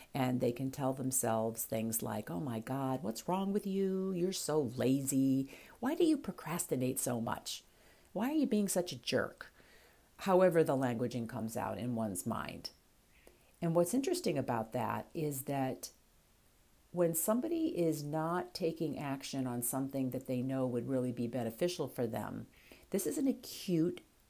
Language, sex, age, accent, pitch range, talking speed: English, female, 50-69, American, 125-170 Hz, 165 wpm